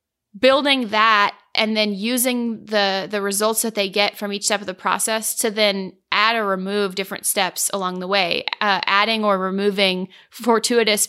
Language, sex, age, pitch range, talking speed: English, female, 20-39, 195-235 Hz, 175 wpm